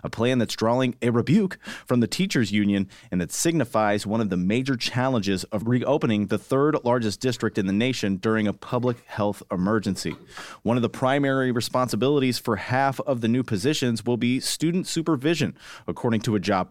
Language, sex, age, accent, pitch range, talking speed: English, male, 30-49, American, 110-145 Hz, 185 wpm